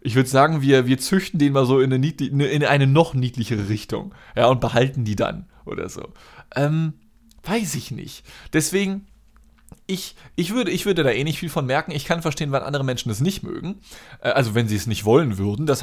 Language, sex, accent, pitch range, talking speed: German, male, German, 130-170 Hz, 210 wpm